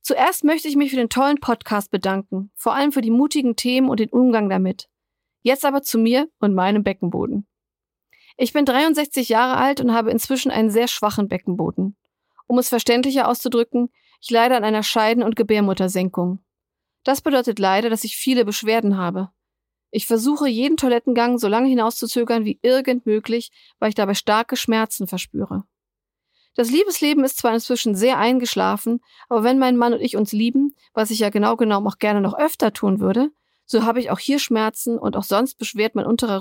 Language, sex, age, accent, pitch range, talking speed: German, female, 40-59, German, 210-255 Hz, 185 wpm